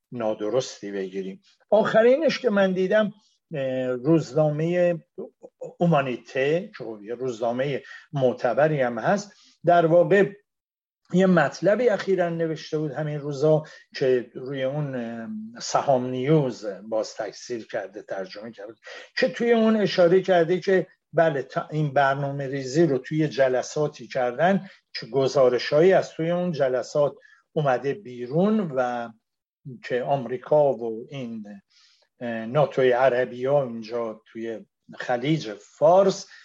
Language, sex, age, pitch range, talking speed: Persian, male, 50-69, 125-175 Hz, 105 wpm